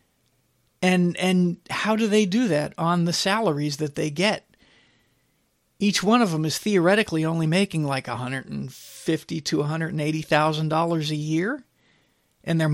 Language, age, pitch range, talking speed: English, 50-69, 150-180 Hz, 170 wpm